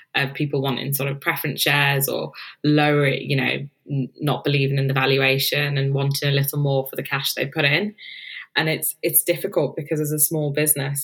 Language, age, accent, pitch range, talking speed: English, 20-39, British, 140-155 Hz, 200 wpm